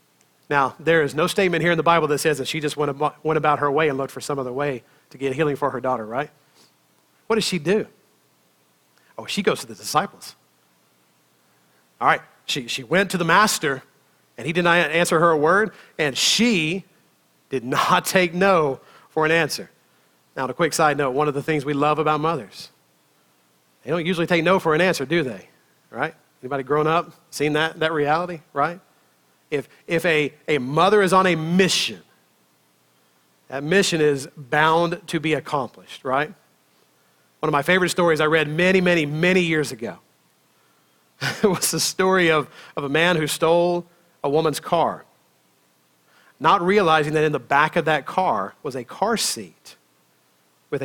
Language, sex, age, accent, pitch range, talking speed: English, male, 40-59, American, 130-170 Hz, 185 wpm